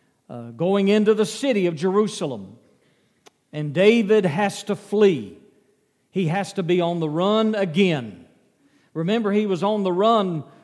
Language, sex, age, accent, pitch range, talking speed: English, male, 50-69, American, 155-200 Hz, 145 wpm